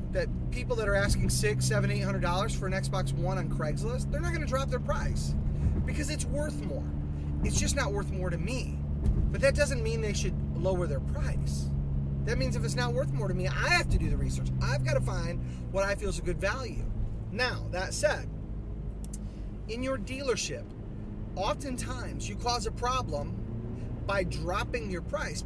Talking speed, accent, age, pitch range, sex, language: 200 wpm, American, 30-49, 70-105 Hz, male, English